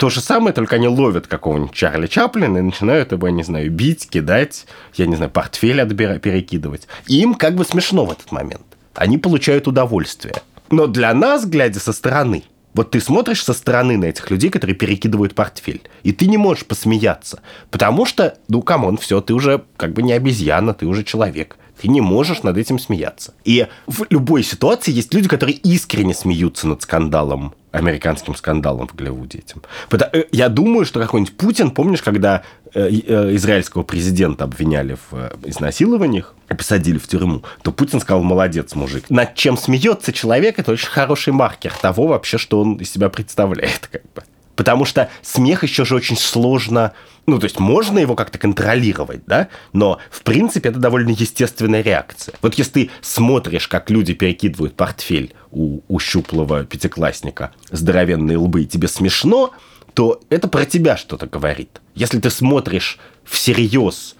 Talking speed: 165 wpm